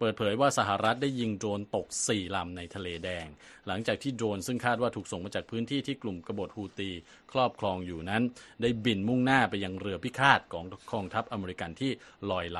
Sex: male